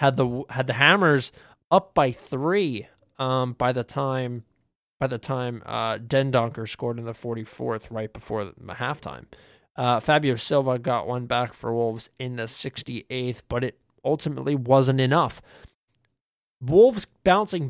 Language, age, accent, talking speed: English, 20-39, American, 150 wpm